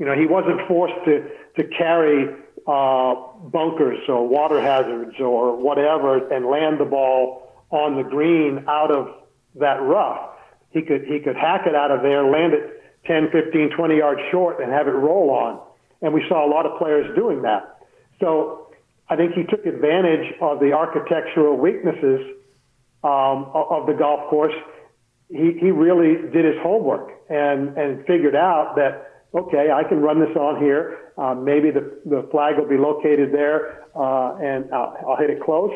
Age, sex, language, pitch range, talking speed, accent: 50-69, male, English, 140-170 Hz, 175 wpm, American